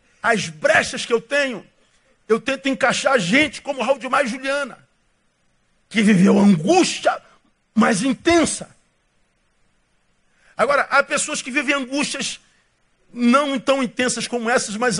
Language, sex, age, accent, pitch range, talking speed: Portuguese, male, 50-69, Brazilian, 165-240 Hz, 130 wpm